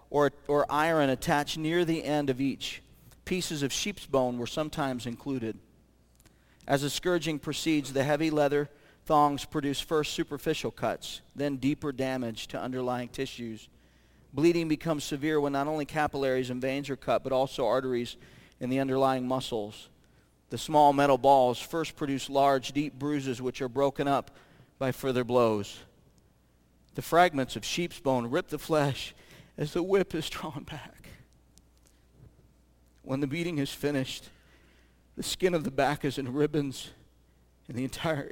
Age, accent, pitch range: 40-59, American, 100-145 Hz